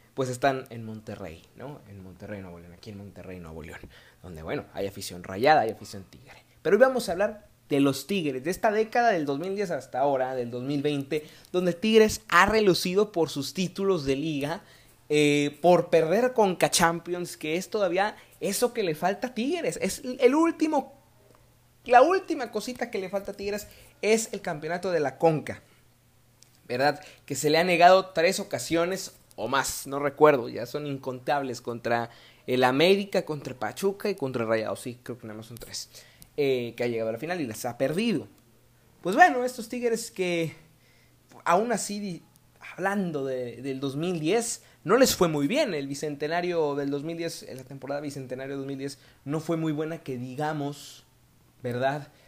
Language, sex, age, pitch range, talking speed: Spanish, male, 30-49, 125-185 Hz, 175 wpm